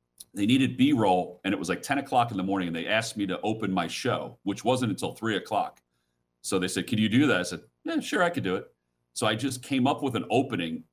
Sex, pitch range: male, 80-105 Hz